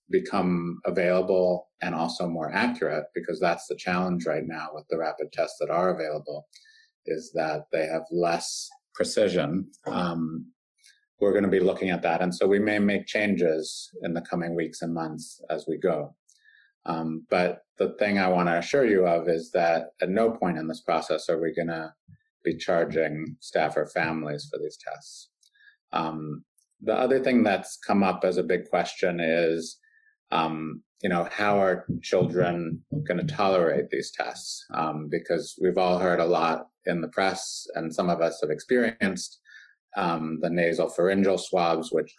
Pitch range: 80-115 Hz